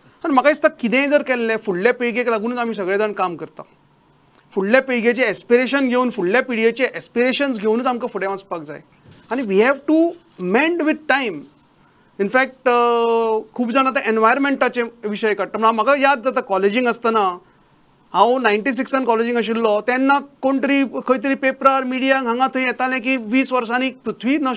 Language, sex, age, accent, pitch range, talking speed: English, male, 40-59, Indian, 225-275 Hz, 85 wpm